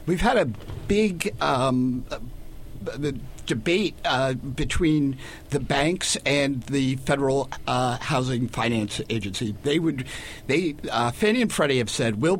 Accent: American